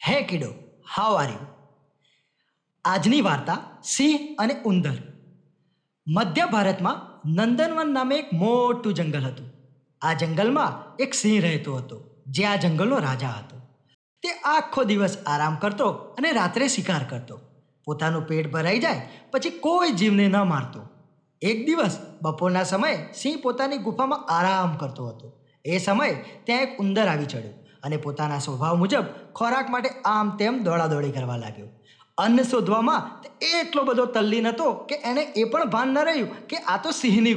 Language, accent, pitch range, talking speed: Gujarati, native, 150-235 Hz, 150 wpm